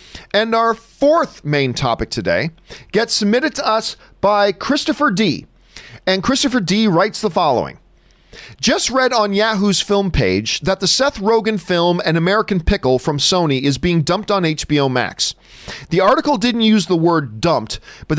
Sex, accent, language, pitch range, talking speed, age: male, American, English, 145-210 Hz, 160 wpm, 40-59